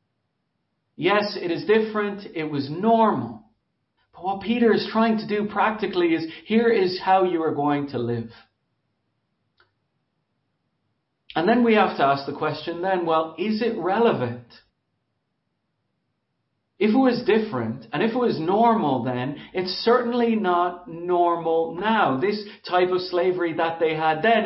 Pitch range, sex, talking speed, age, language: 180-230 Hz, male, 145 wpm, 40-59, English